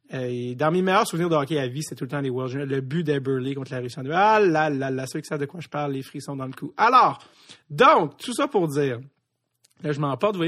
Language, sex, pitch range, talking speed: French, male, 145-195 Hz, 275 wpm